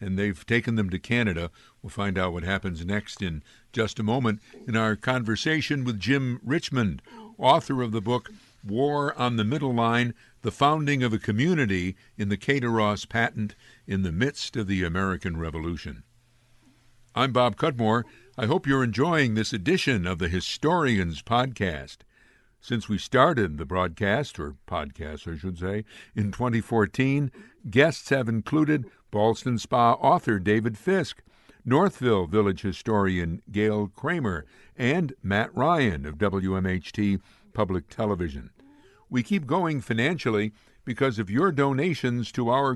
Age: 60-79